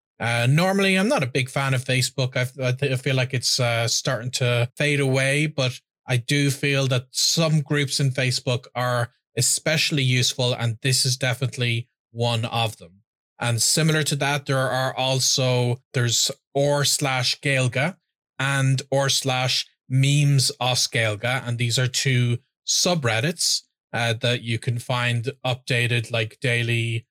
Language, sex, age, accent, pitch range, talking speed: English, male, 20-39, Irish, 120-140 Hz, 150 wpm